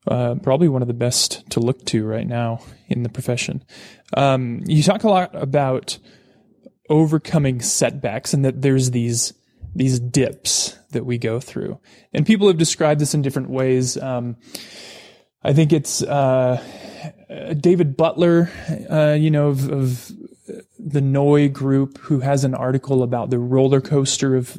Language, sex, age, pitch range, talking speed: English, male, 20-39, 125-155 Hz, 155 wpm